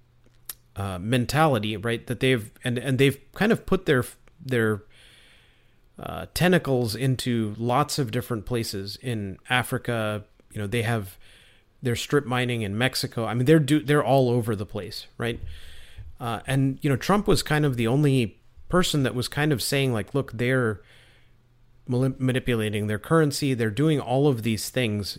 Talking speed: 165 wpm